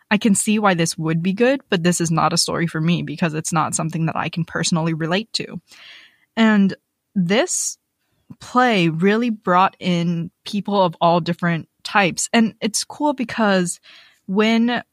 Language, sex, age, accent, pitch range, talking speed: English, female, 20-39, American, 170-215 Hz, 170 wpm